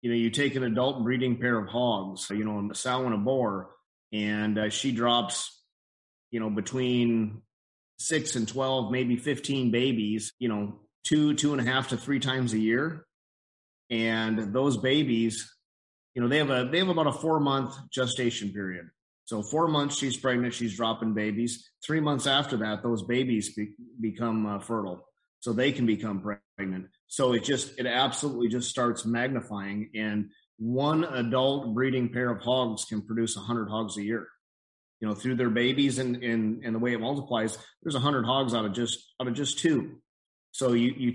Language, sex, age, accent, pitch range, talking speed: English, male, 30-49, American, 110-130 Hz, 185 wpm